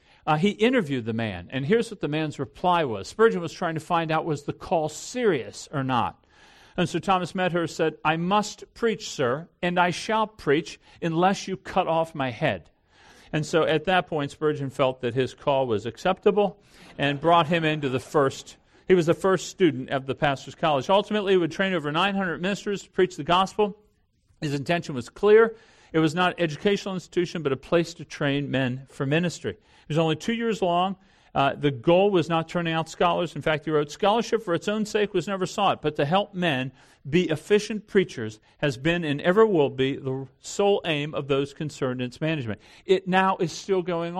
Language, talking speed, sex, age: English, 205 wpm, male, 50-69